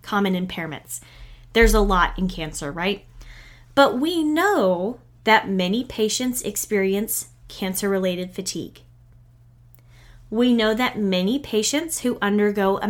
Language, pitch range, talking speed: English, 165-235 Hz, 115 wpm